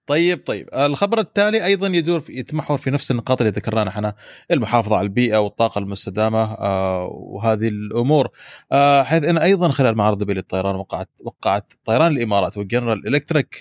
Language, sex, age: Arabic, male, 30-49